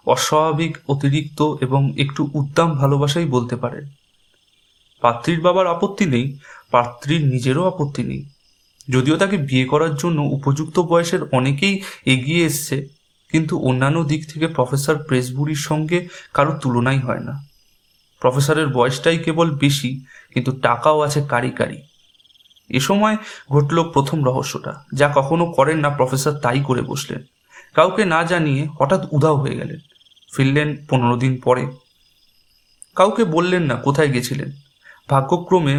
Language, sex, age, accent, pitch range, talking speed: Bengali, male, 30-49, native, 130-160 Hz, 125 wpm